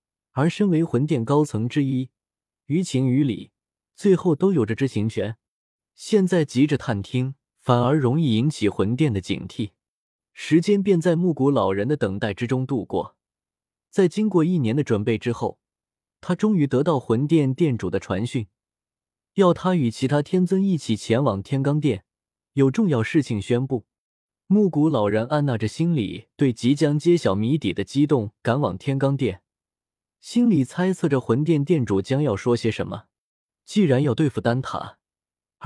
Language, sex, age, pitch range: Chinese, male, 20-39, 115-165 Hz